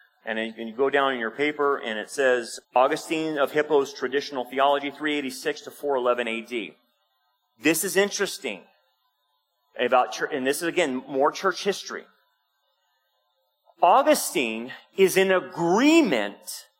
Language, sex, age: English, male, 30-49